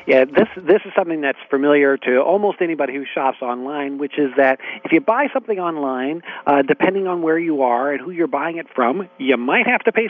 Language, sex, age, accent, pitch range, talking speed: English, male, 50-69, American, 130-170 Hz, 240 wpm